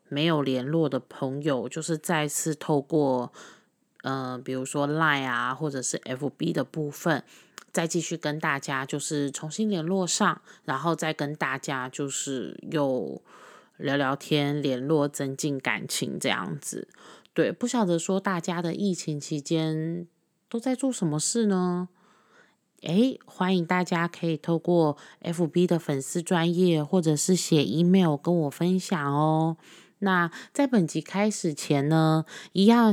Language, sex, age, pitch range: Chinese, female, 20-39, 145-190 Hz